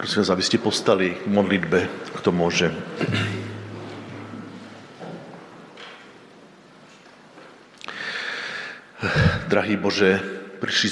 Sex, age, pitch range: male, 50-69, 85-100 Hz